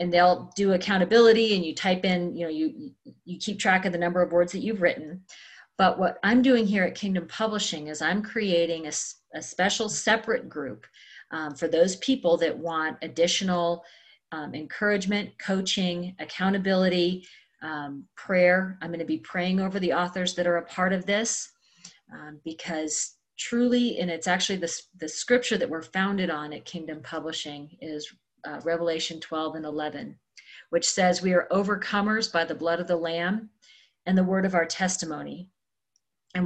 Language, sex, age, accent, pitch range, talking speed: English, female, 40-59, American, 165-200 Hz, 175 wpm